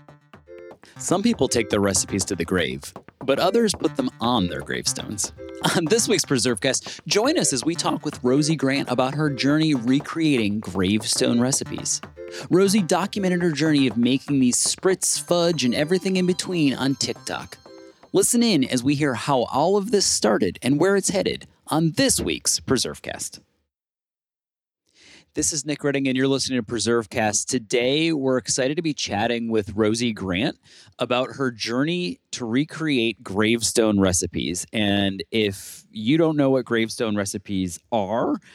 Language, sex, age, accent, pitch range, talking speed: English, male, 30-49, American, 100-135 Hz, 155 wpm